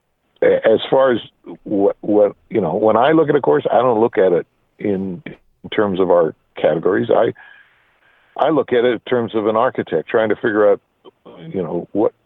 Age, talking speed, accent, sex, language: 50-69, 200 wpm, American, male, English